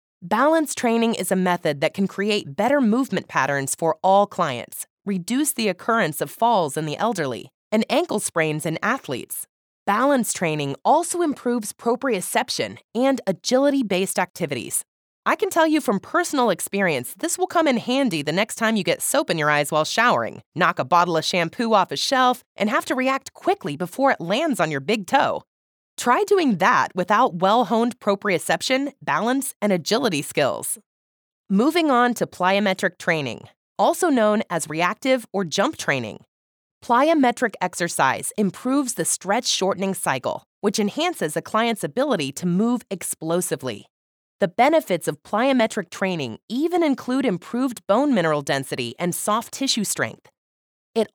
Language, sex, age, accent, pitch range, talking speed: English, female, 20-39, American, 175-255 Hz, 155 wpm